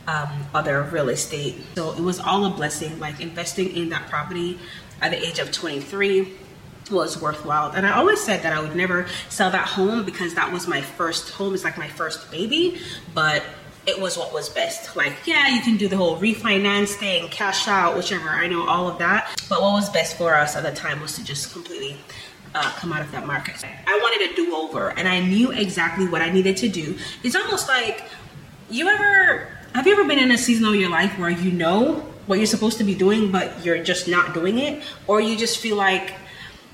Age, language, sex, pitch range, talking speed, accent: 20-39, English, female, 160-215 Hz, 220 wpm, American